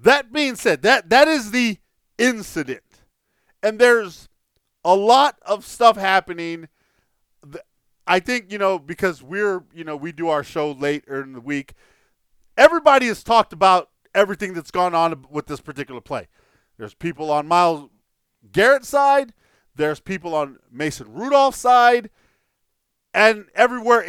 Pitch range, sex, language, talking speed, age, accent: 165-235 Hz, male, English, 140 wpm, 40-59, American